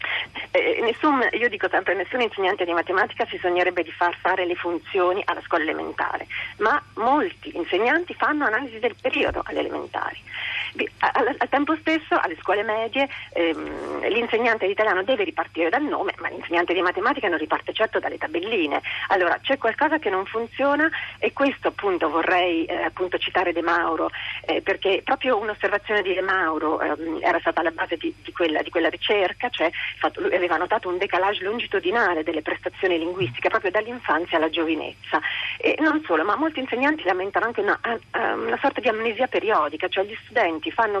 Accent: native